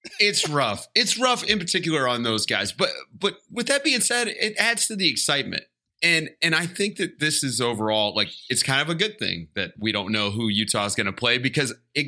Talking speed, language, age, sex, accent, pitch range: 235 wpm, English, 30-49, male, American, 110-165 Hz